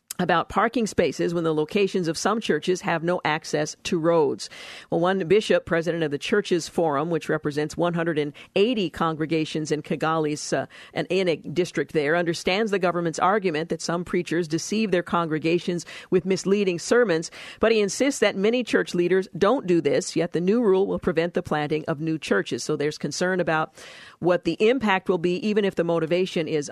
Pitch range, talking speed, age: 160-195 Hz, 175 wpm, 50-69